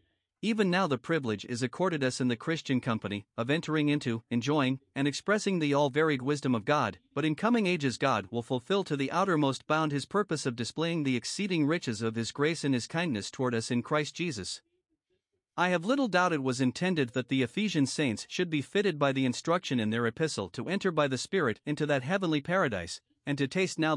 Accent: American